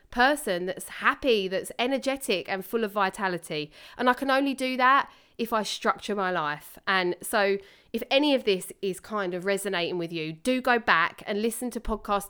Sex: female